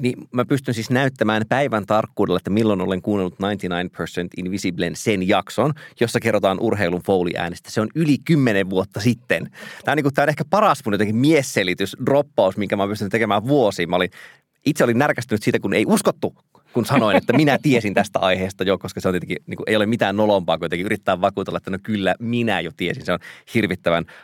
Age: 30-49